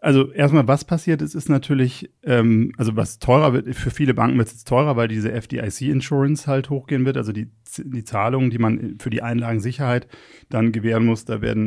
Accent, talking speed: German, 195 wpm